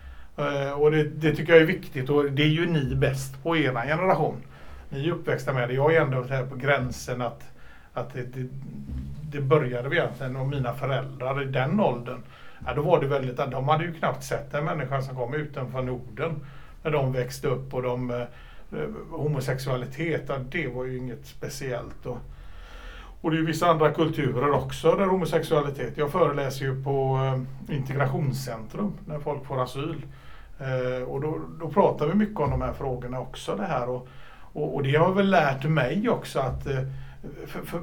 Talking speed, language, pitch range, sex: 180 wpm, Swedish, 130-160 Hz, male